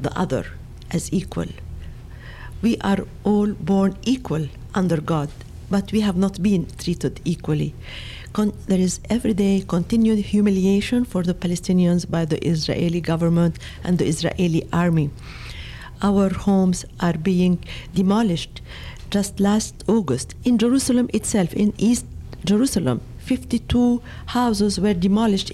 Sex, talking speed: female, 120 wpm